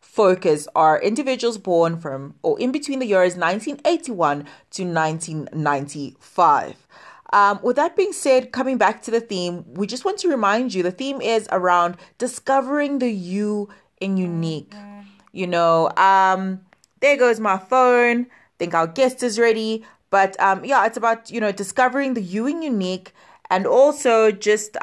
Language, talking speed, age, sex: English, 160 wpm, 20-39, female